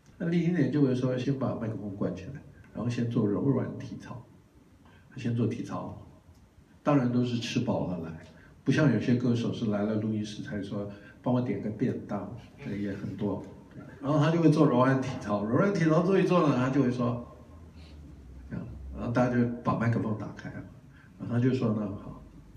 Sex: male